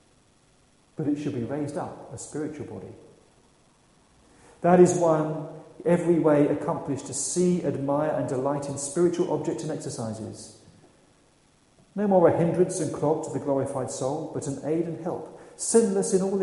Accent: British